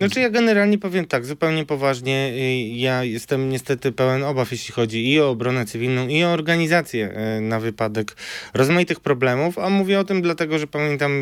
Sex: male